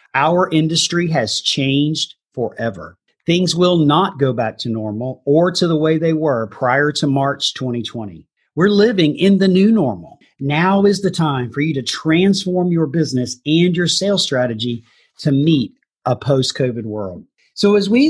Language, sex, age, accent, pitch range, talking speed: English, male, 40-59, American, 130-180 Hz, 165 wpm